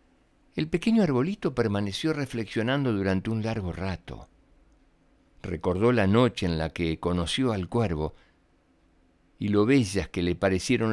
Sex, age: male, 60-79